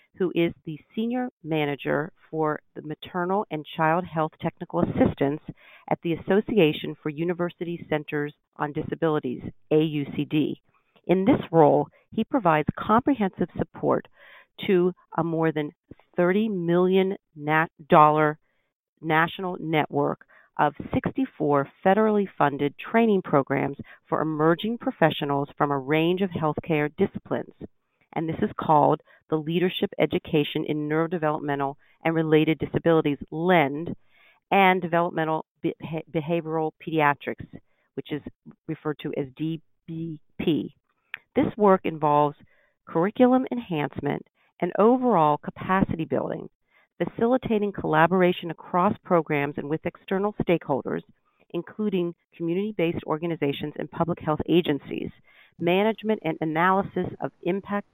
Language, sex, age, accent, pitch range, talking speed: English, female, 50-69, American, 150-185 Hz, 110 wpm